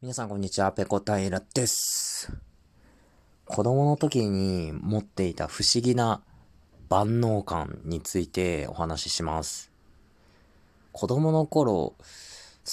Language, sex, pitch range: Japanese, male, 85-120 Hz